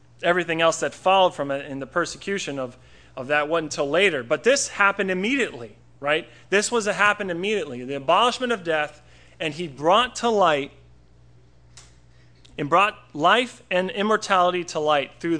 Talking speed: 165 wpm